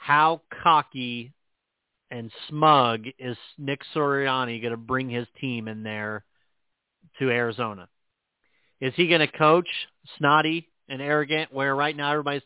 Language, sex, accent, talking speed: English, male, American, 135 wpm